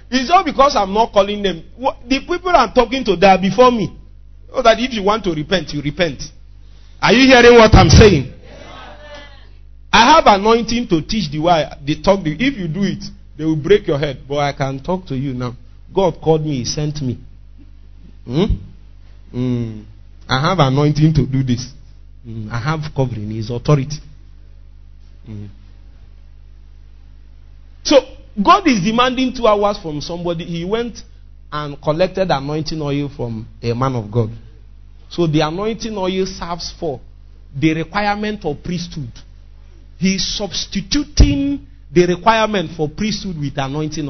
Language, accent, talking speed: English, Nigerian, 160 wpm